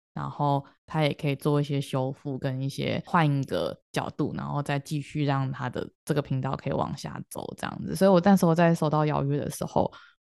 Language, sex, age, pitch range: Chinese, female, 20-39, 145-180 Hz